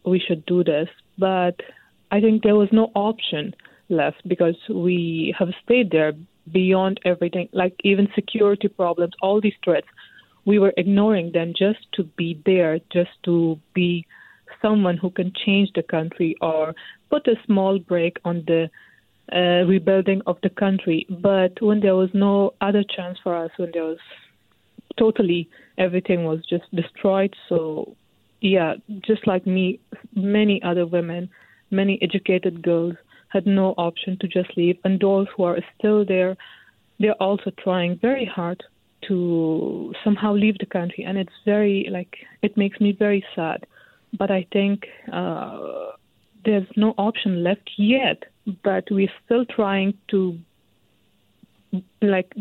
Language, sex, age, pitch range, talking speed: English, female, 30-49, 175-205 Hz, 150 wpm